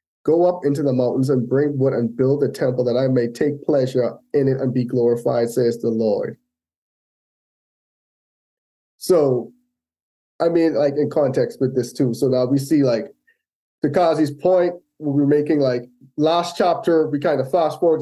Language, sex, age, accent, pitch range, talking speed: English, male, 20-39, American, 135-175 Hz, 175 wpm